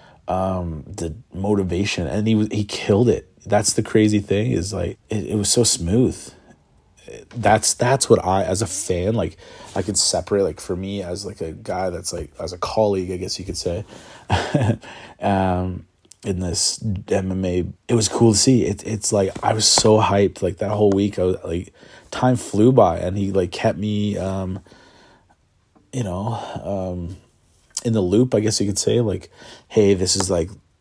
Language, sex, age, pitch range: English, male, 30-49, 95-110 Hz